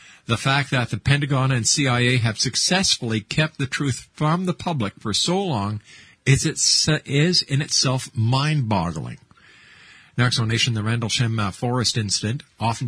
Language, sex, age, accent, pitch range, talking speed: English, male, 50-69, American, 115-145 Hz, 155 wpm